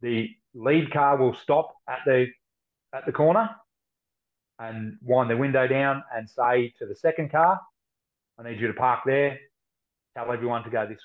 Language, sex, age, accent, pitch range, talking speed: English, male, 30-49, Australian, 115-135 Hz, 175 wpm